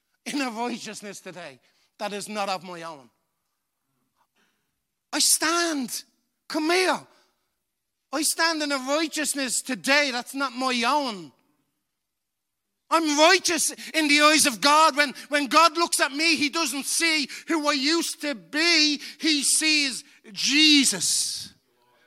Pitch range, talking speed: 240-315 Hz, 130 wpm